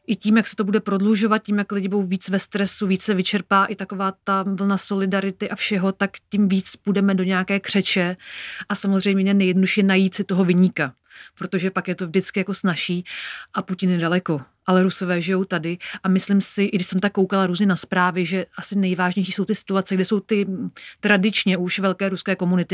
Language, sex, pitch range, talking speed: Czech, female, 180-200 Hz, 205 wpm